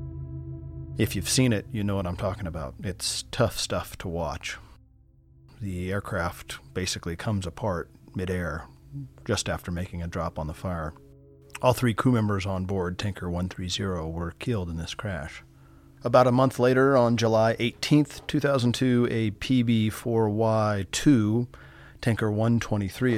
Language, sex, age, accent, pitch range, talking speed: English, male, 40-59, American, 85-115 Hz, 140 wpm